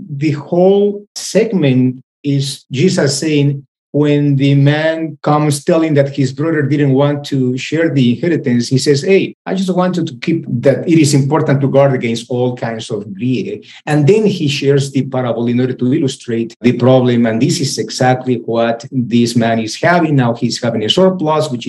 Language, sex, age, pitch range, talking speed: English, male, 50-69, 120-150 Hz, 185 wpm